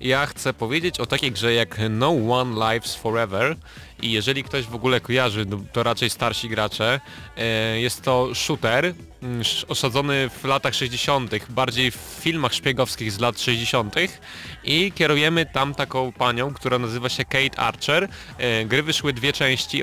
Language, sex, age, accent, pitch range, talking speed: Polish, male, 20-39, native, 125-145 Hz, 150 wpm